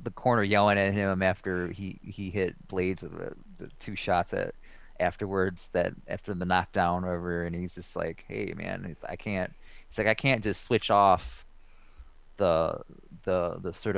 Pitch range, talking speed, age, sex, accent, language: 90-110 Hz, 180 wpm, 20-39, male, American, English